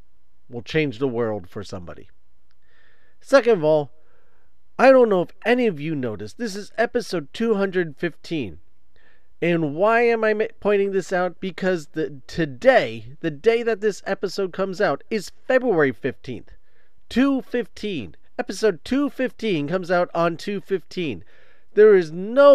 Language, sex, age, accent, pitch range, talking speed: English, male, 40-59, American, 150-215 Hz, 135 wpm